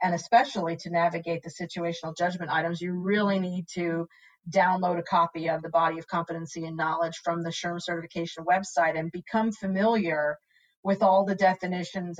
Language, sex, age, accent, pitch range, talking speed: English, female, 40-59, American, 170-200 Hz, 165 wpm